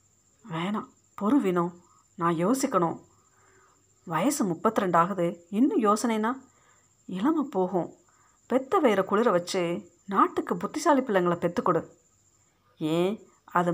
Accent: native